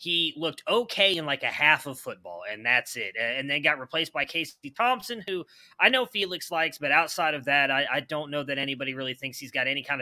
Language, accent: English, American